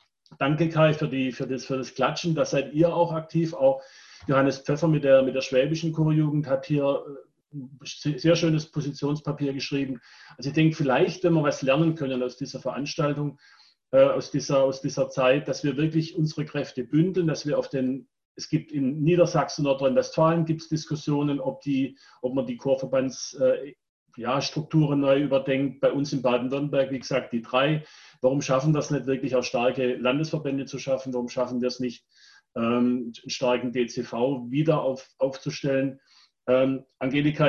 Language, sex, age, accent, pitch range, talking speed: German, male, 40-59, German, 130-155 Hz, 165 wpm